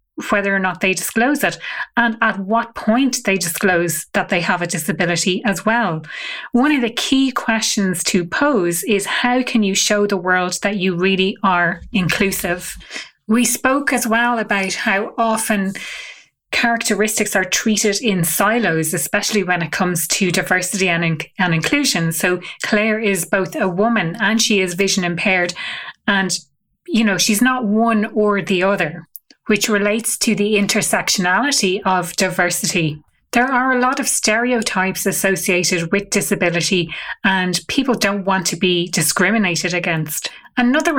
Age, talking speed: 30-49, 150 wpm